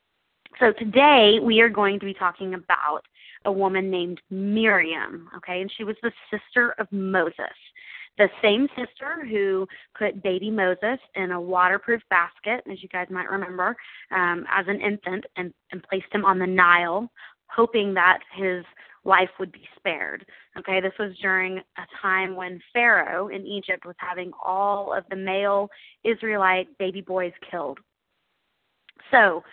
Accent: American